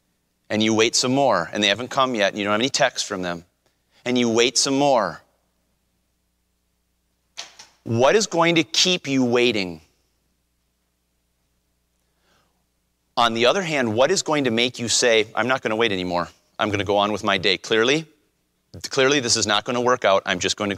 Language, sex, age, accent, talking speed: English, male, 30-49, American, 185 wpm